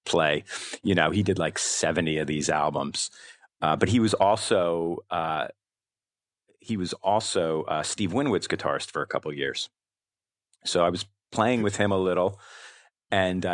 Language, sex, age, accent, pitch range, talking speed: English, male, 40-59, American, 80-95 Hz, 165 wpm